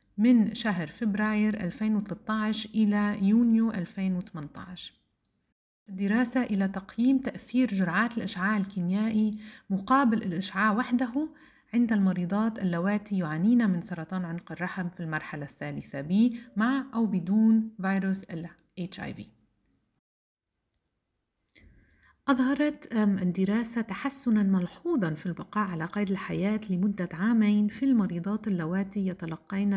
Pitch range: 180-220 Hz